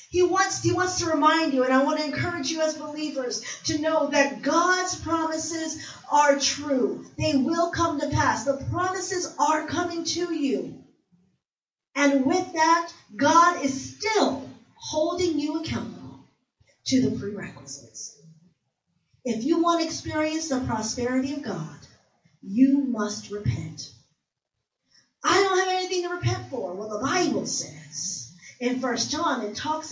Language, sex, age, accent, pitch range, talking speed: English, female, 40-59, American, 245-335 Hz, 150 wpm